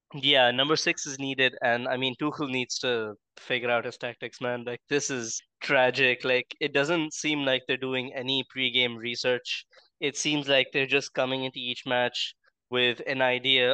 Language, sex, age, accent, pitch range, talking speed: English, male, 20-39, Indian, 120-135 Hz, 185 wpm